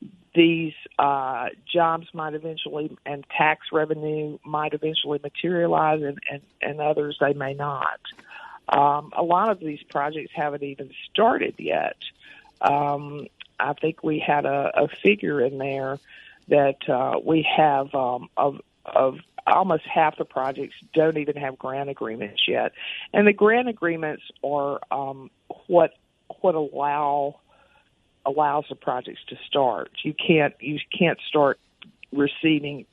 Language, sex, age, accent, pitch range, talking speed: English, female, 50-69, American, 140-160 Hz, 135 wpm